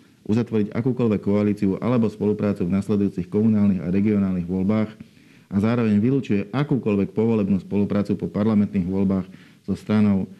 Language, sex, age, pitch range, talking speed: Slovak, male, 50-69, 95-105 Hz, 125 wpm